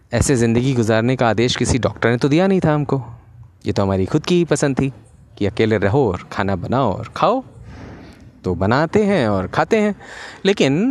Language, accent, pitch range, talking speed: Hindi, native, 105-145 Hz, 200 wpm